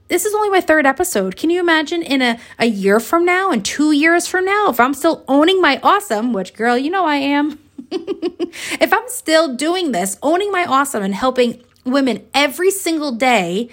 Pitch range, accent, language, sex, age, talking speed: 220-330 Hz, American, English, female, 30-49, 200 wpm